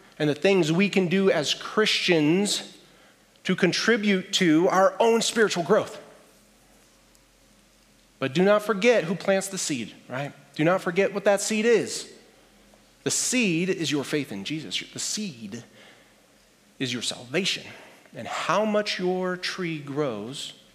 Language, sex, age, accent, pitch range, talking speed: English, male, 30-49, American, 140-195 Hz, 140 wpm